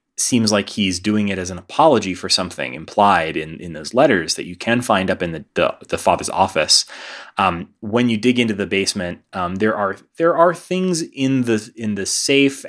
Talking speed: 210 wpm